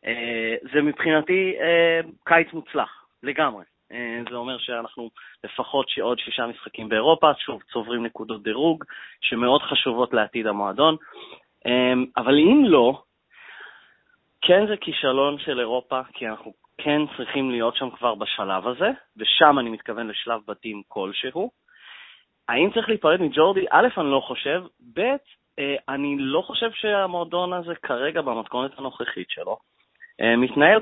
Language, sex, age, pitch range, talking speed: Hebrew, male, 30-49, 115-165 Hz, 130 wpm